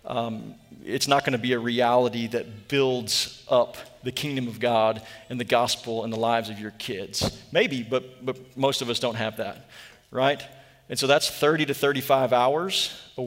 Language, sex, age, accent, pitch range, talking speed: English, male, 40-59, American, 125-155 Hz, 190 wpm